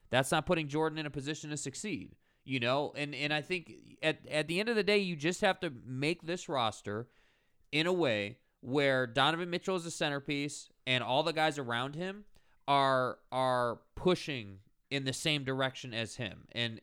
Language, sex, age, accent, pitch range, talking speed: English, male, 20-39, American, 130-165 Hz, 195 wpm